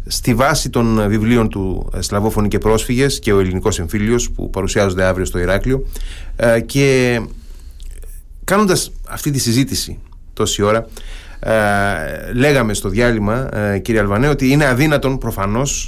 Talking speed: 125 wpm